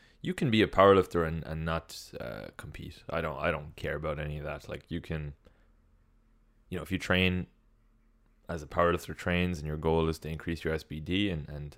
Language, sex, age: English, male, 20-39